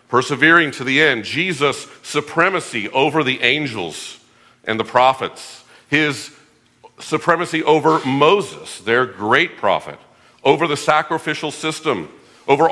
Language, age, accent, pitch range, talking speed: English, 50-69, American, 115-150 Hz, 115 wpm